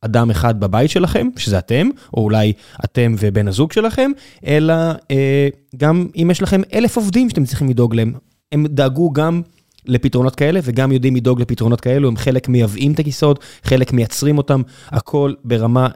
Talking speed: 165 wpm